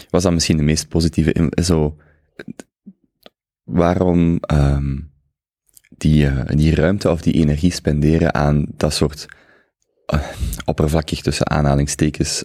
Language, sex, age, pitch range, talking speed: Dutch, male, 30-49, 75-85 Hz, 105 wpm